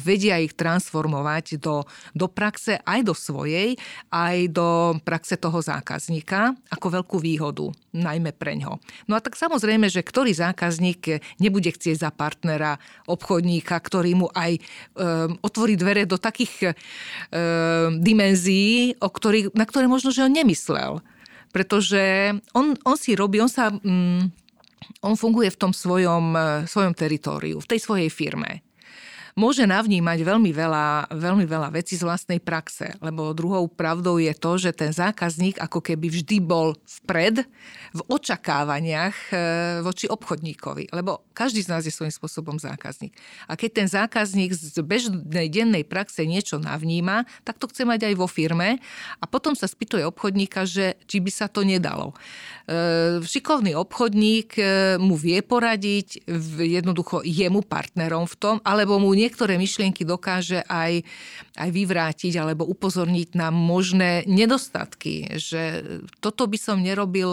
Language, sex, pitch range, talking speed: Slovak, female, 165-210 Hz, 140 wpm